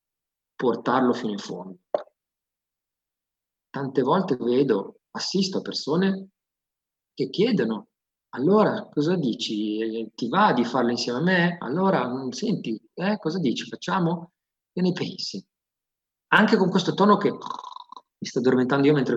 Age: 50-69